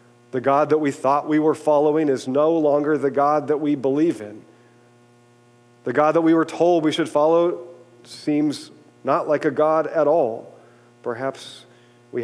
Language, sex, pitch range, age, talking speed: English, male, 120-160 Hz, 40-59, 170 wpm